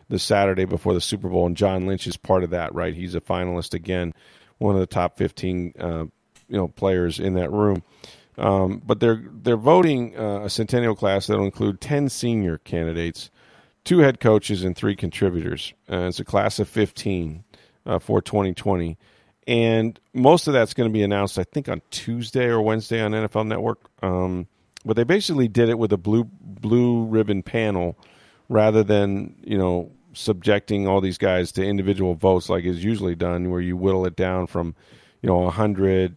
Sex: male